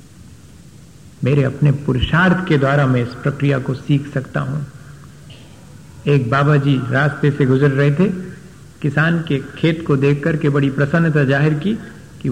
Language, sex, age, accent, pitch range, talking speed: Hindi, male, 50-69, native, 135-160 Hz, 150 wpm